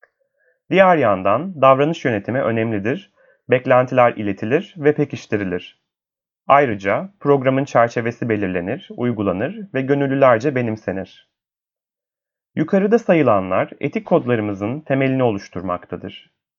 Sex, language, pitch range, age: male, Turkish, 110-150 Hz, 30-49